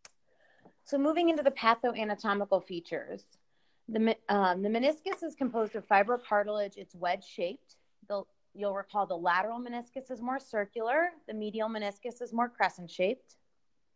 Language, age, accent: English, 30-49, American